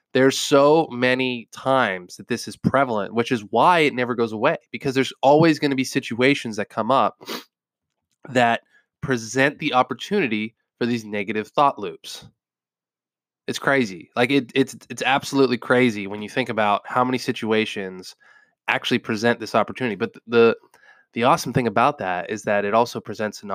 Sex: male